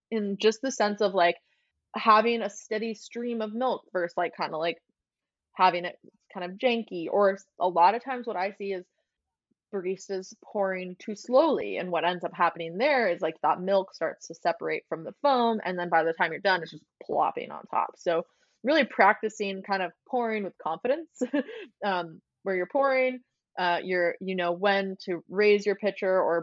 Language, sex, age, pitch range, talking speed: English, female, 20-39, 180-230 Hz, 190 wpm